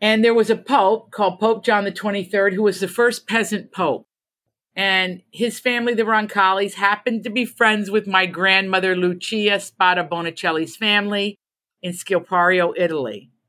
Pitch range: 165-210 Hz